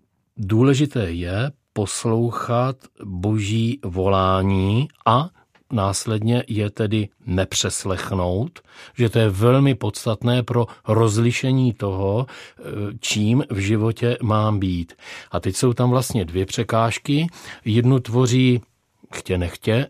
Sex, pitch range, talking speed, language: male, 105-120 Hz, 105 wpm, Czech